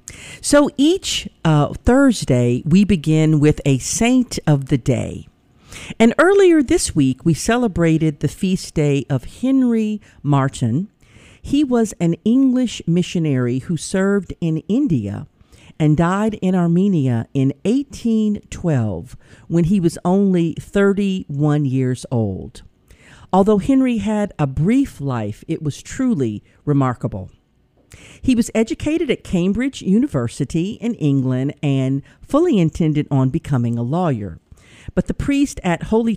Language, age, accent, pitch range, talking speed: English, 50-69, American, 135-210 Hz, 125 wpm